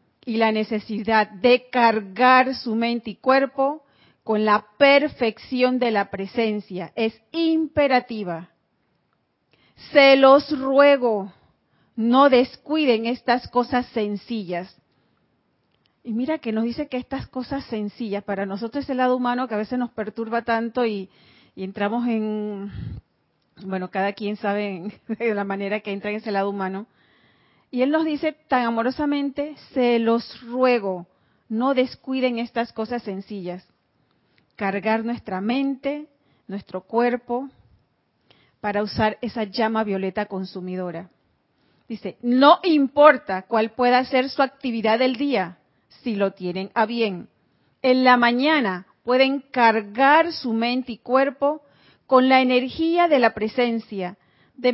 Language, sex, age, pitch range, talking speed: Spanish, female, 40-59, 205-260 Hz, 130 wpm